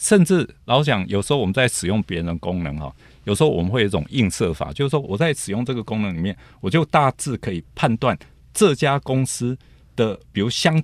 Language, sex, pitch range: Chinese, male, 90-125 Hz